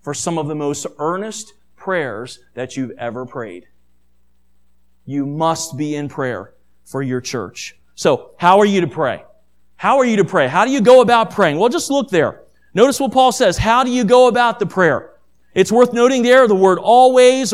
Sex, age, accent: male, 40-59, American